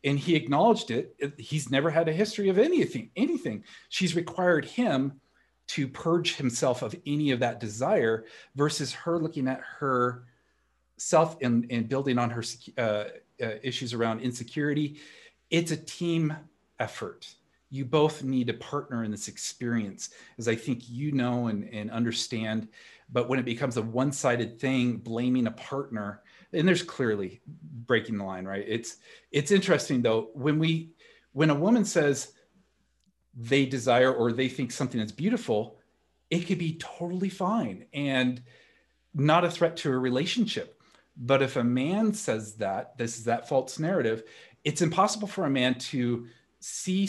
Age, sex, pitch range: 40-59, male, 120-160 Hz